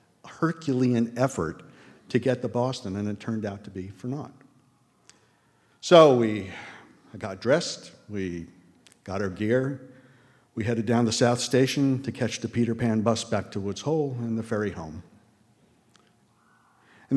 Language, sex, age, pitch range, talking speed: English, male, 50-69, 100-125 Hz, 150 wpm